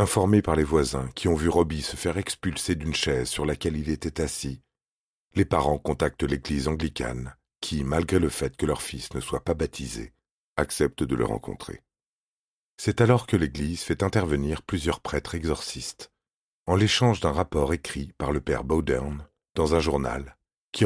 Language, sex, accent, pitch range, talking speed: French, male, French, 70-90 Hz, 175 wpm